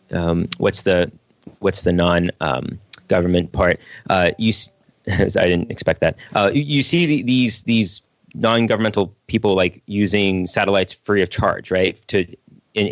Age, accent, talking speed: 30-49, American, 155 wpm